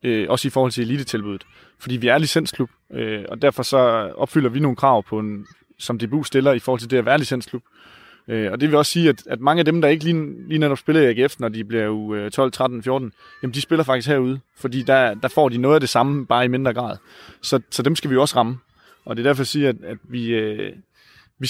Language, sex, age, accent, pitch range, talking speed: Danish, male, 20-39, native, 120-145 Hz, 245 wpm